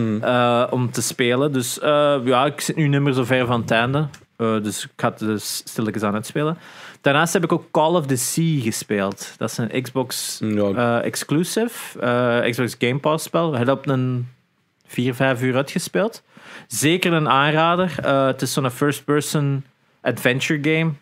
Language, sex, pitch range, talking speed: Dutch, male, 120-150 Hz, 190 wpm